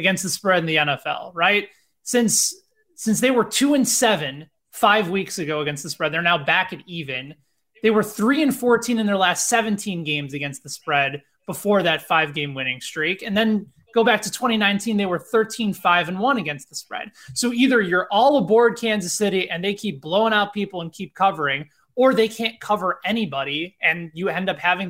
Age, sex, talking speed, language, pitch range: 20-39, male, 195 wpm, English, 165-225 Hz